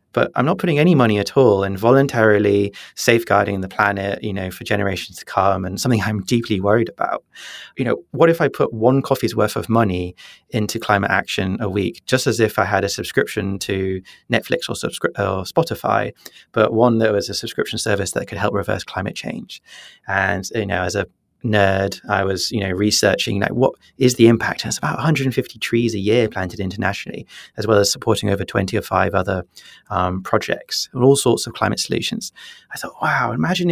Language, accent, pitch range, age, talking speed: English, British, 100-130 Hz, 30-49, 200 wpm